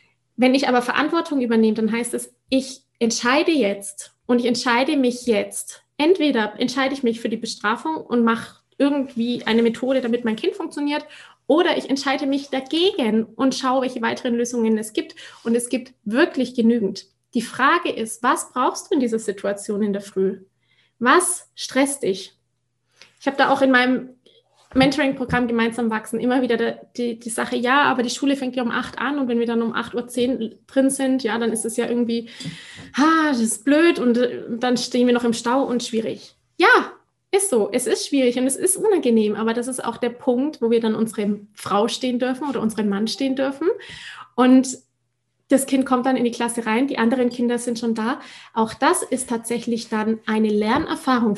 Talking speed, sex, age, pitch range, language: 195 wpm, female, 20-39, 225-270 Hz, German